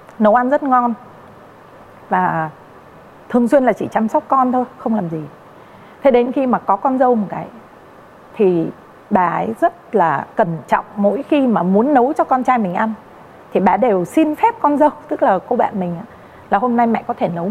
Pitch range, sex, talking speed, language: 195-260 Hz, female, 210 wpm, Vietnamese